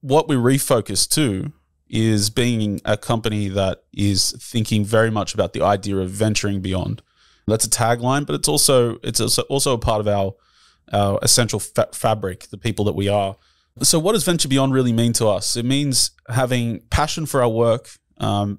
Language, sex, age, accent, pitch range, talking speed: English, male, 20-39, Australian, 100-120 Hz, 185 wpm